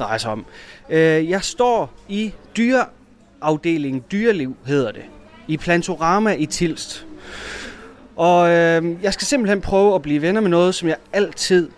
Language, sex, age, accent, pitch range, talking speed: Danish, male, 30-49, native, 145-190 Hz, 120 wpm